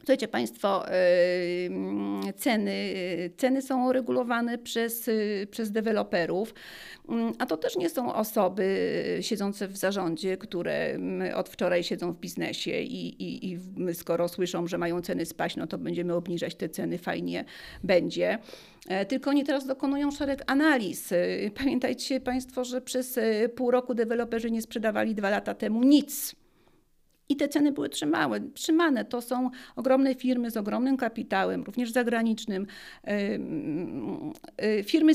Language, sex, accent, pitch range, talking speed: Polish, female, native, 195-255 Hz, 130 wpm